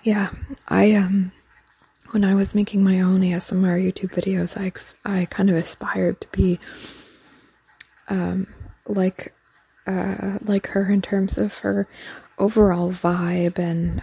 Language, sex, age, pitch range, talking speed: English, female, 20-39, 175-200 Hz, 135 wpm